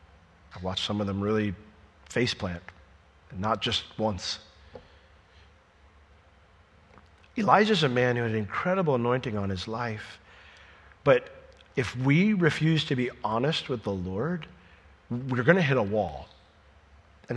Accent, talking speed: American, 140 wpm